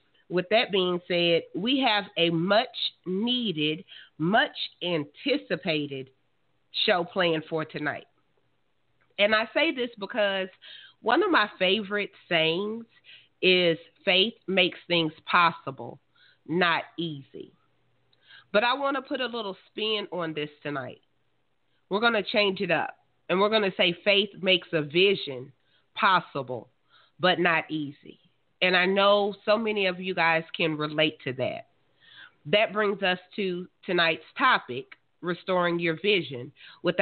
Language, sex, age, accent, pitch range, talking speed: English, female, 30-49, American, 170-215 Hz, 135 wpm